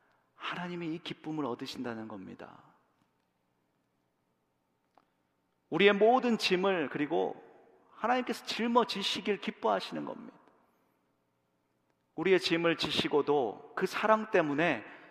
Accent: native